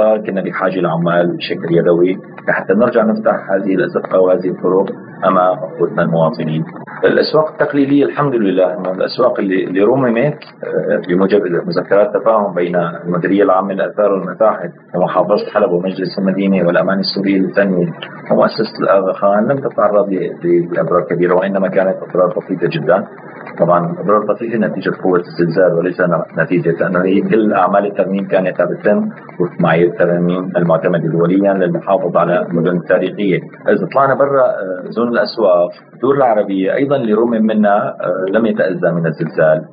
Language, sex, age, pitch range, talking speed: Arabic, male, 40-59, 85-105 Hz, 125 wpm